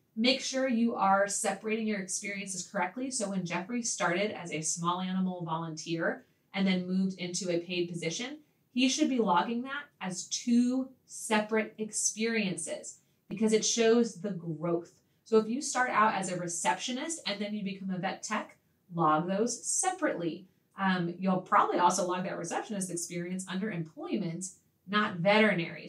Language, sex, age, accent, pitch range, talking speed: English, female, 30-49, American, 175-230 Hz, 160 wpm